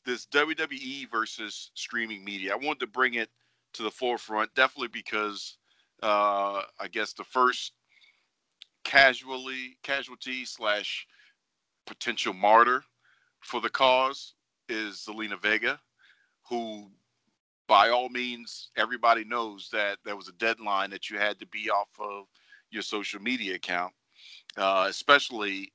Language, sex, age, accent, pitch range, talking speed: English, male, 40-59, American, 95-120 Hz, 125 wpm